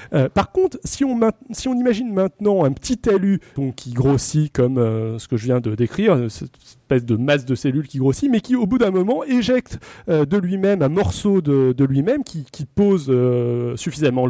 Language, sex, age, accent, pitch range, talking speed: French, male, 30-49, French, 145-220 Hz, 225 wpm